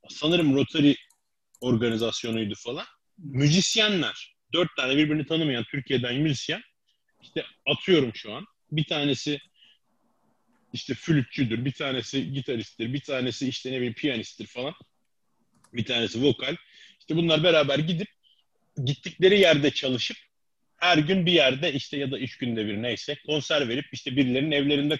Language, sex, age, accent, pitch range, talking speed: Turkish, male, 30-49, native, 120-155 Hz, 130 wpm